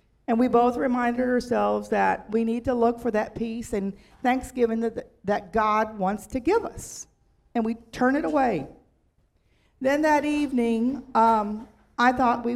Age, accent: 50-69, American